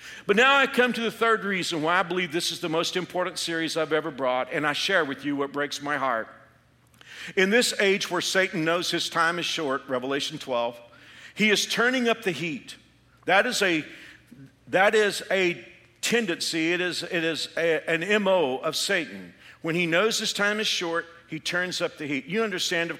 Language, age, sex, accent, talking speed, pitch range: English, 50-69, male, American, 195 wpm, 145-200 Hz